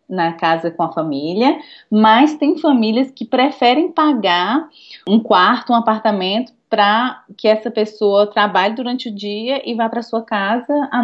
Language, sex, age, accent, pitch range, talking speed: Portuguese, female, 20-39, Brazilian, 195-245 Hz, 160 wpm